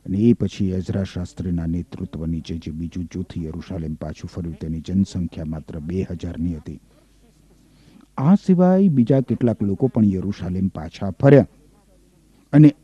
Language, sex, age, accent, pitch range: Gujarati, male, 50-69, native, 105-155 Hz